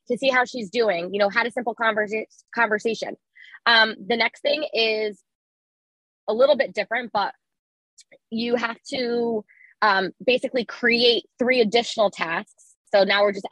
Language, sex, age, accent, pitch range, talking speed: English, female, 20-39, American, 200-245 Hz, 155 wpm